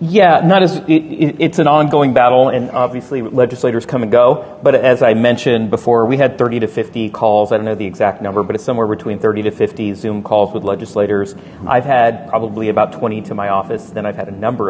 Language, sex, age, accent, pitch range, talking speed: English, male, 40-59, American, 110-145 Hz, 220 wpm